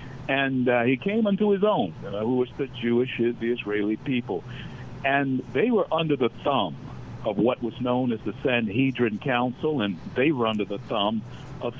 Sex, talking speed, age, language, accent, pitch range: male, 180 wpm, 60-79, English, American, 120-145 Hz